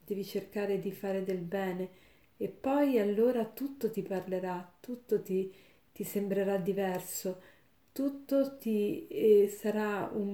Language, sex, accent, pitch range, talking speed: Italian, female, native, 185-210 Hz, 120 wpm